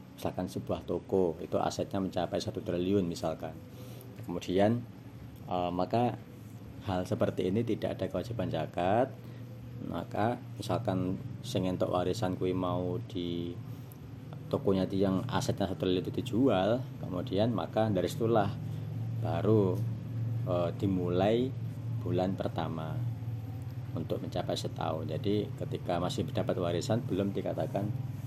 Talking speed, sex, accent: 110 wpm, male, native